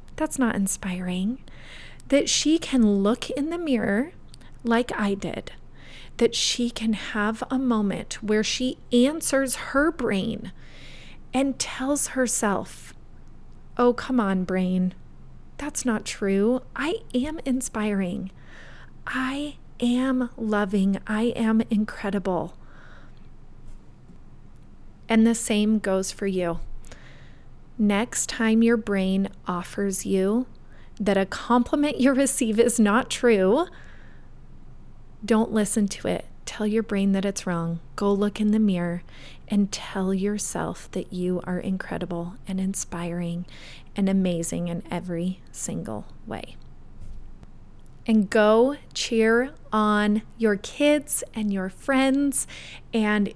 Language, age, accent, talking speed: English, 30-49, American, 115 wpm